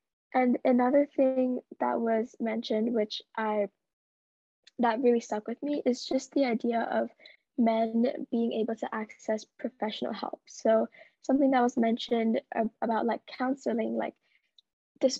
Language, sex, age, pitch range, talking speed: English, female, 10-29, 220-255 Hz, 140 wpm